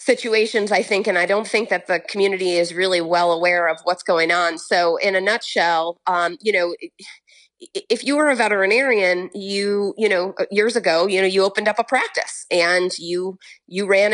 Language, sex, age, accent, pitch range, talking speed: English, female, 30-49, American, 175-215 Hz, 195 wpm